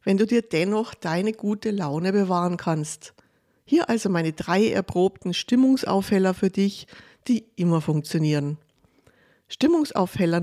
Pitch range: 165-220 Hz